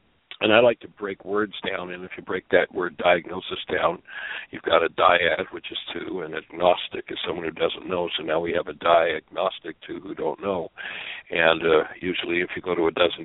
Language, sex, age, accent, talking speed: English, male, 60-79, American, 220 wpm